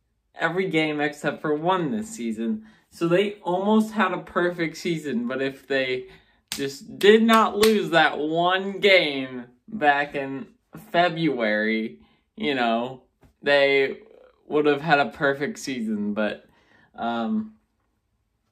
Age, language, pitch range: 20-39, English, 120-170 Hz